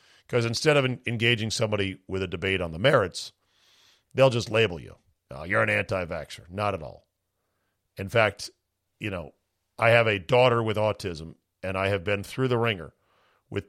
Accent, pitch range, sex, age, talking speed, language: American, 95-120 Hz, male, 50-69, 180 wpm, English